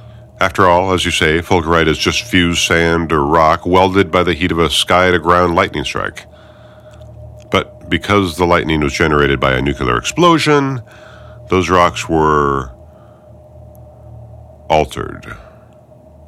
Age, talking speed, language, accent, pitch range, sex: 50-69, 135 wpm, English, American, 85-120 Hz, male